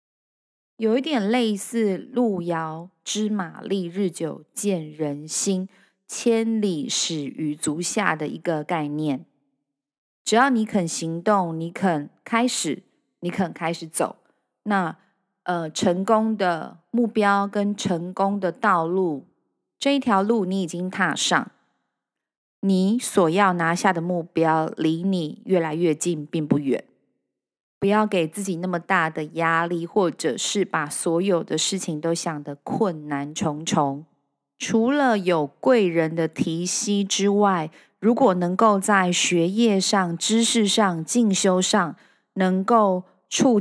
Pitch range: 165-215 Hz